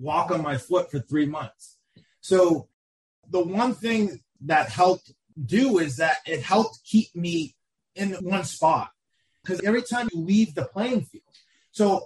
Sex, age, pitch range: male, 30-49, 165-210 Hz